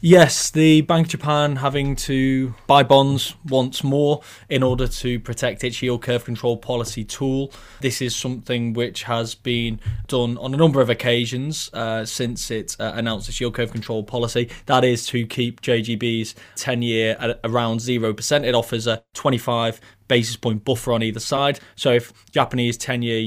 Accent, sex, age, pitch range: British, male, 20-39, 115-135 Hz